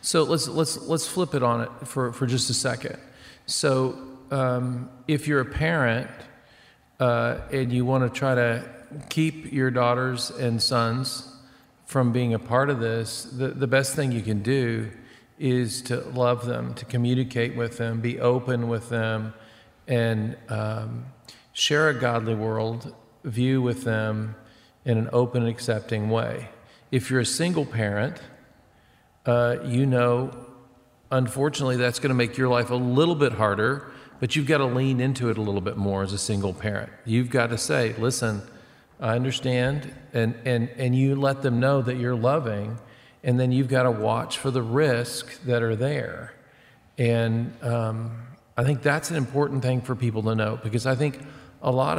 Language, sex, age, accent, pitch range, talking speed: English, male, 50-69, American, 115-130 Hz, 175 wpm